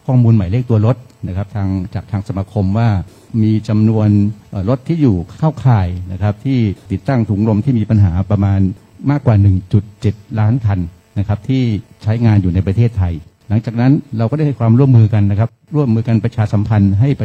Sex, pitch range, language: male, 100-125 Hz, Thai